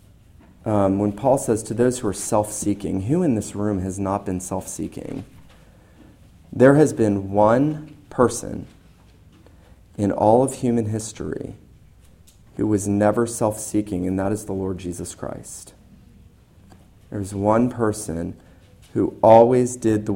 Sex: male